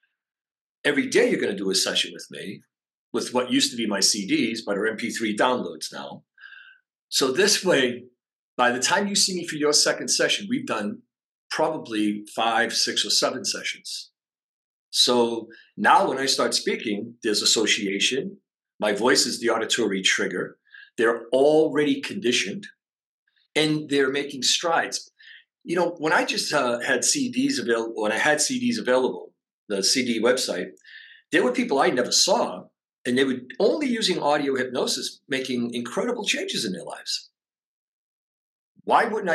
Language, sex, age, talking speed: English, male, 50-69, 155 wpm